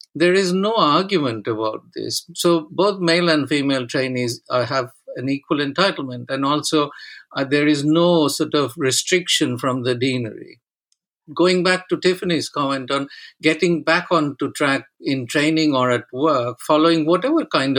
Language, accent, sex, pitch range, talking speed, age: English, Indian, male, 125-160 Hz, 160 wpm, 50-69